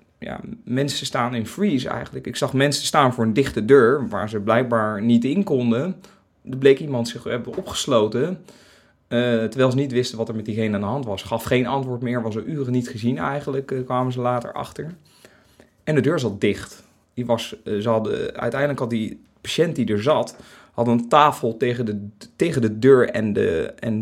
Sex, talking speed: male, 195 wpm